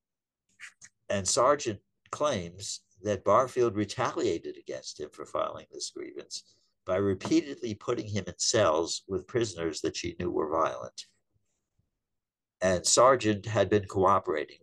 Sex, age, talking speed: male, 60-79, 125 wpm